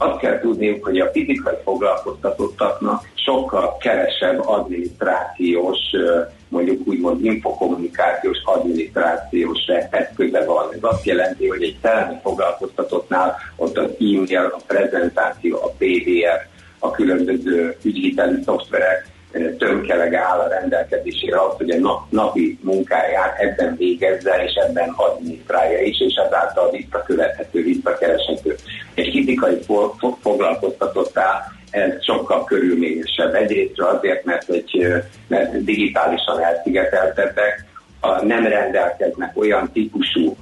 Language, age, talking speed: Hungarian, 50-69, 105 wpm